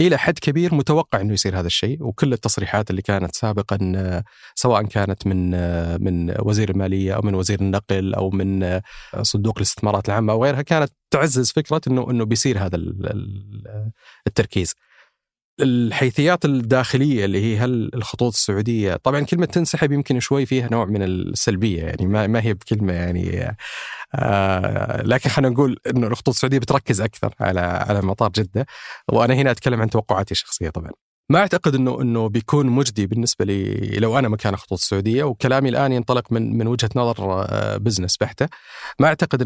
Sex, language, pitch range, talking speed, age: male, Arabic, 100-130 Hz, 150 wpm, 30-49